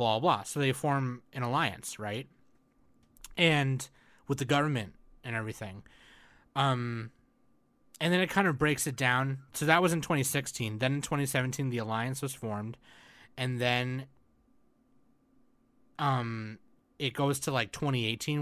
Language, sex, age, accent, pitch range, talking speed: English, male, 30-49, American, 110-140 Hz, 145 wpm